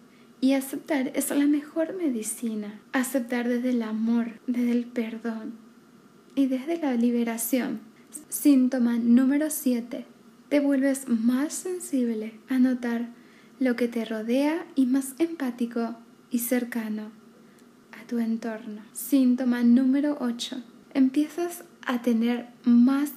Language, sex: Spanish, female